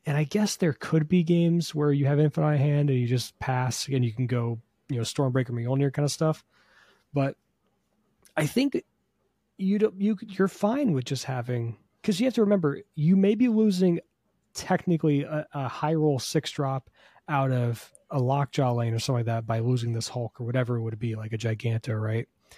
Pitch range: 120-160 Hz